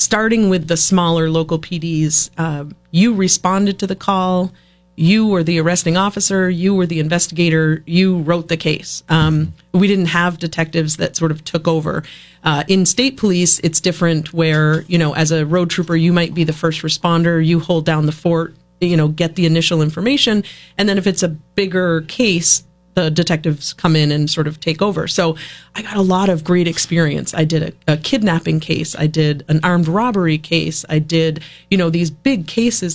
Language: English